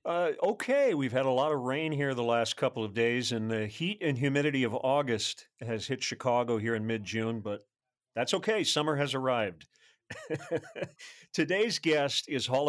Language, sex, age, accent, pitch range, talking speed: English, male, 40-59, American, 115-150 Hz, 175 wpm